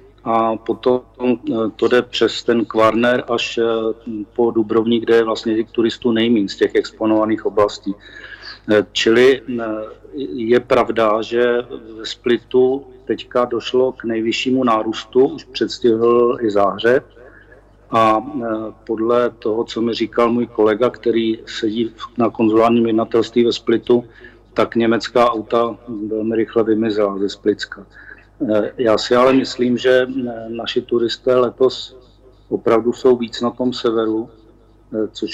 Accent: native